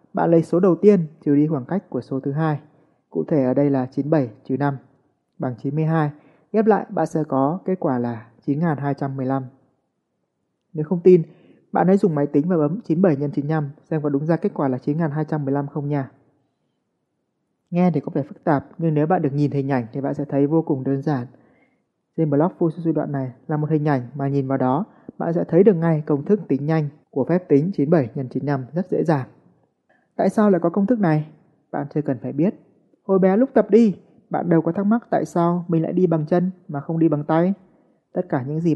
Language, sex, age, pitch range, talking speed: Vietnamese, male, 20-39, 140-175 Hz, 225 wpm